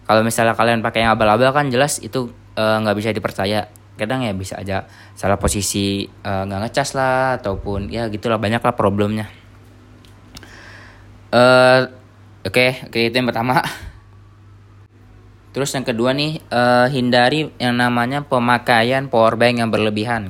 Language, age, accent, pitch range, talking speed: Indonesian, 20-39, native, 105-125 Hz, 140 wpm